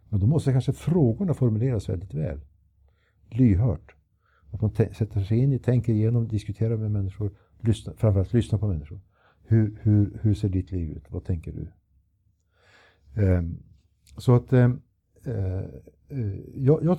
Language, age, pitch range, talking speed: Swedish, 60-79, 95-120 Hz, 130 wpm